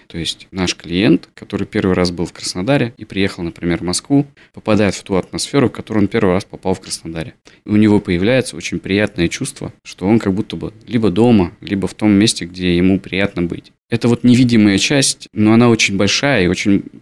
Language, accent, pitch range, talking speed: Russian, native, 95-115 Hz, 210 wpm